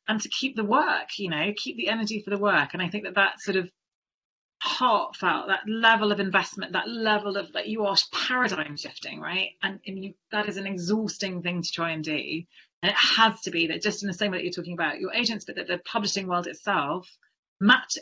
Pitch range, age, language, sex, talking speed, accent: 185-225 Hz, 30-49, English, female, 230 wpm, British